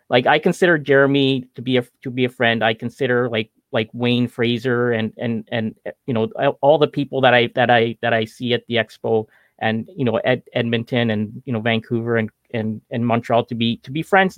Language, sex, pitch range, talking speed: English, male, 115-140 Hz, 220 wpm